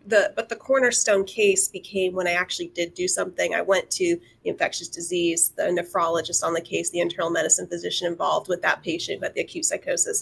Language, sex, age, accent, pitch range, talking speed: English, female, 30-49, American, 185-240 Hz, 205 wpm